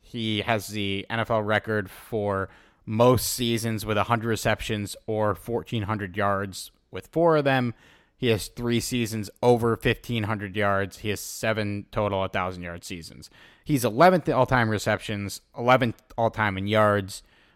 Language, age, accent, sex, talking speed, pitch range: English, 30-49, American, male, 135 wpm, 100-130 Hz